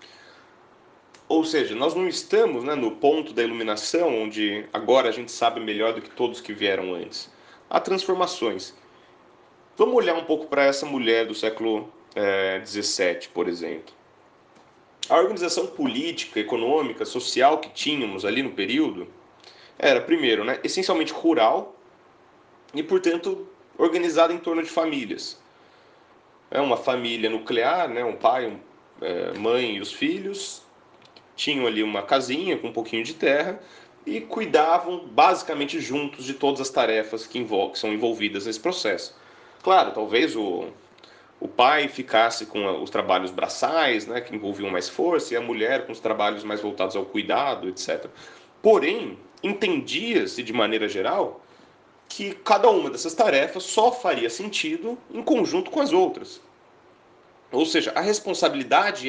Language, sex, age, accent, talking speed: Portuguese, male, 30-49, Brazilian, 145 wpm